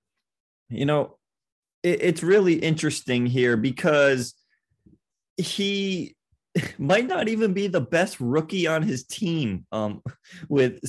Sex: male